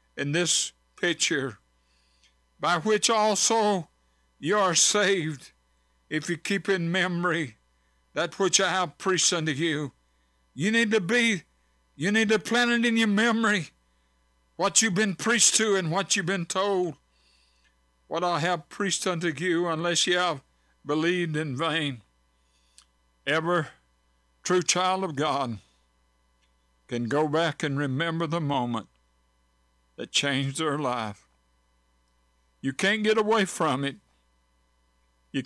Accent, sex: American, male